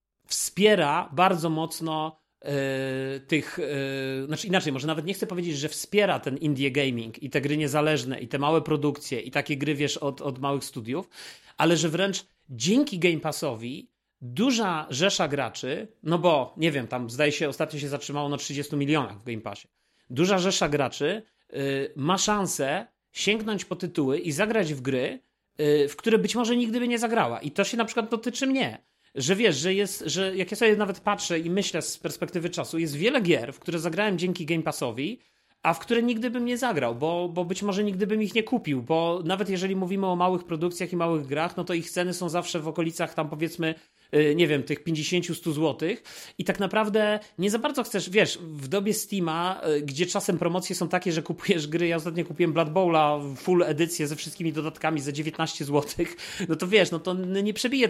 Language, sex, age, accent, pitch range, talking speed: Polish, male, 40-59, native, 145-190 Hz, 195 wpm